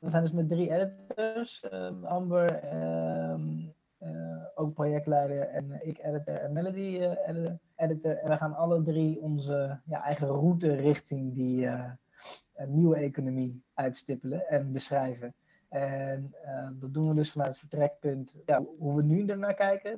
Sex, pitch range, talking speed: male, 140-170 Hz, 145 wpm